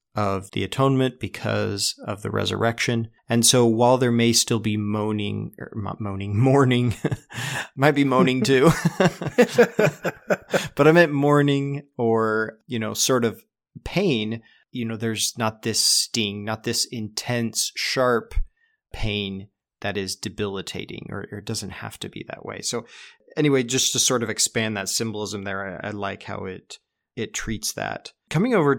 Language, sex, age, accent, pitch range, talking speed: English, male, 30-49, American, 105-125 Hz, 160 wpm